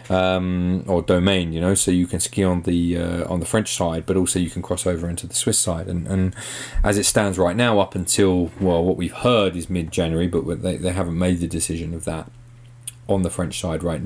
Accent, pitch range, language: British, 85-105 Hz, English